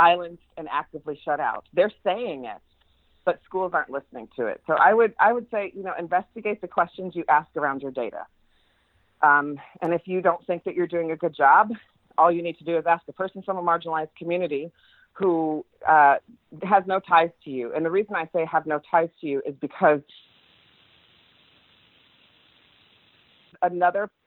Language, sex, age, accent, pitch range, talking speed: English, female, 40-59, American, 145-180 Hz, 185 wpm